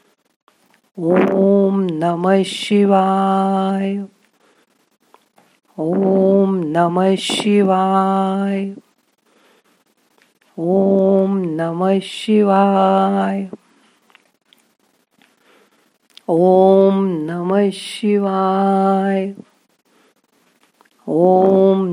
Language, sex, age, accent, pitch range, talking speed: Marathi, female, 50-69, native, 185-200 Hz, 30 wpm